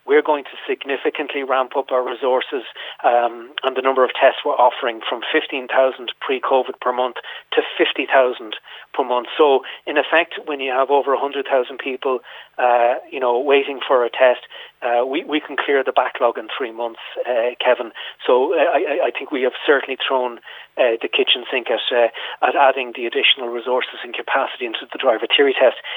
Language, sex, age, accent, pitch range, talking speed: English, male, 30-49, Irish, 125-170 Hz, 185 wpm